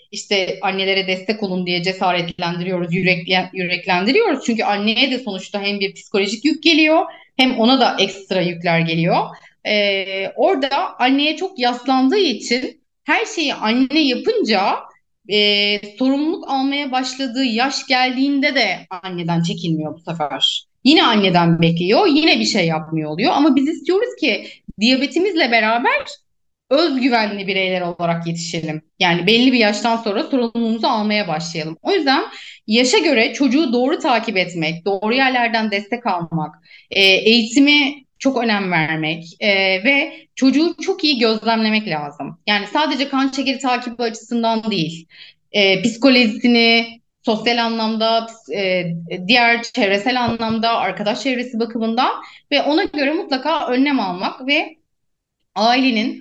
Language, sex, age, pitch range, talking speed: Turkish, female, 30-49, 195-270 Hz, 125 wpm